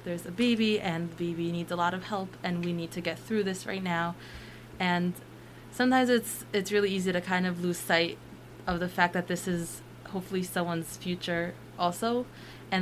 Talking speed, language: 195 wpm, English